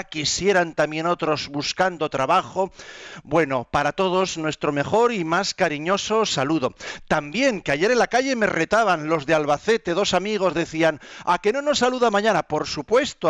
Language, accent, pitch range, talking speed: Spanish, Spanish, 135-180 Hz, 160 wpm